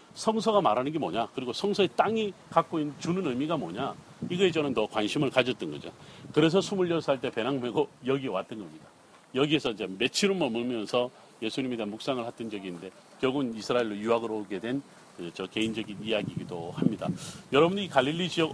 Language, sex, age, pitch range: Korean, male, 40-59, 135-180 Hz